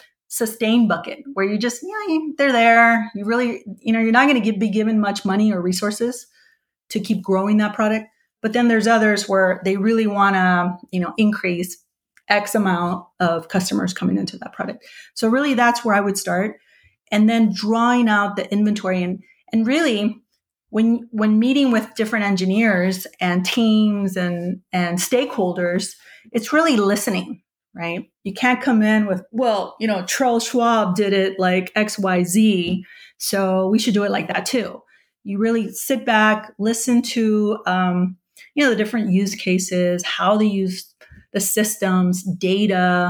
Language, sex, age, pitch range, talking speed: English, female, 30-49, 185-230 Hz, 170 wpm